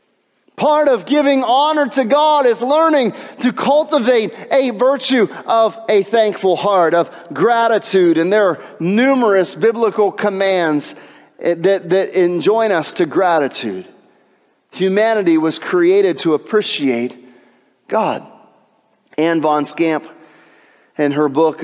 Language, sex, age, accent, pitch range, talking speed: English, male, 40-59, American, 145-205 Hz, 120 wpm